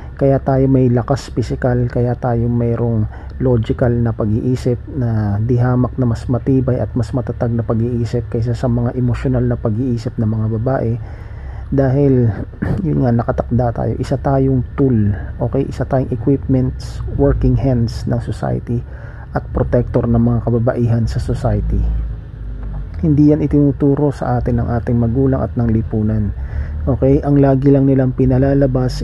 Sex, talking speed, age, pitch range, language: male, 145 wpm, 40-59, 115-130 Hz, Filipino